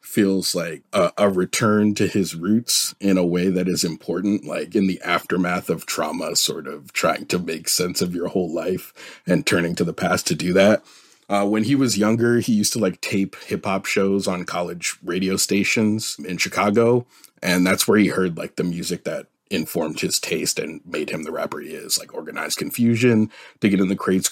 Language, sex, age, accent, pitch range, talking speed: English, male, 30-49, American, 90-110 Hz, 200 wpm